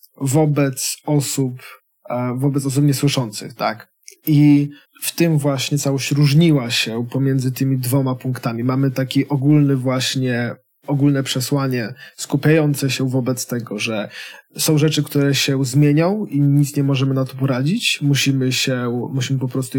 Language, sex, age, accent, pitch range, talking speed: Polish, male, 20-39, native, 130-145 Hz, 130 wpm